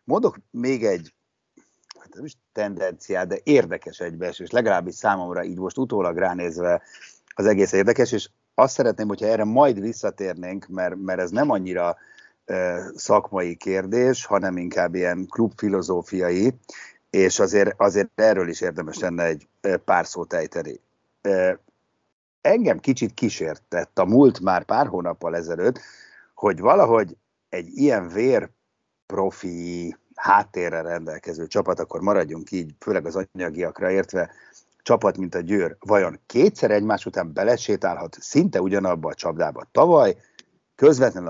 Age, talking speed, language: 60-79, 125 wpm, Hungarian